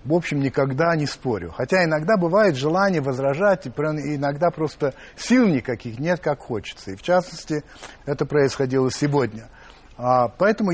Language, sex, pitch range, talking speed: Russian, male, 125-160 Hz, 135 wpm